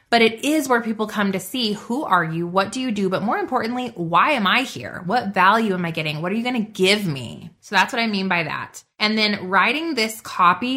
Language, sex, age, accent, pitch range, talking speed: English, female, 20-39, American, 175-225 Hz, 255 wpm